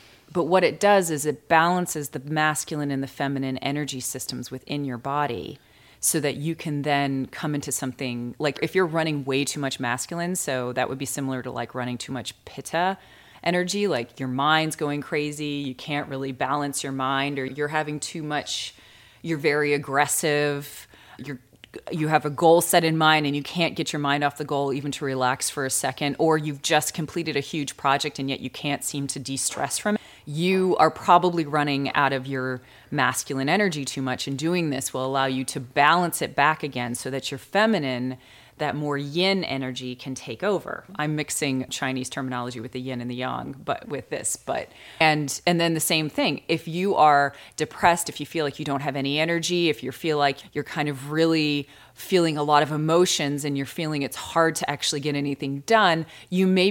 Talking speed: 205 wpm